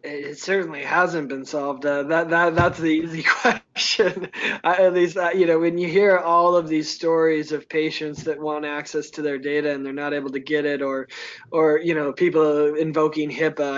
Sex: male